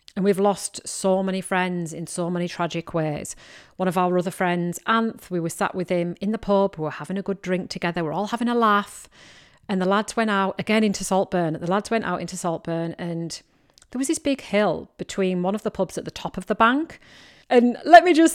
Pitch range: 175-225 Hz